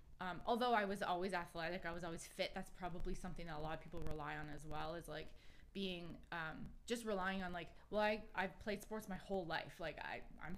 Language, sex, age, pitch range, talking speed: English, female, 20-39, 165-200 Hz, 235 wpm